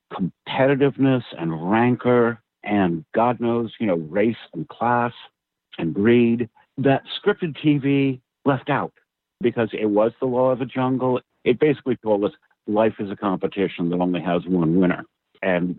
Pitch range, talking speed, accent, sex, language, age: 95-120 Hz, 150 wpm, American, male, English, 60-79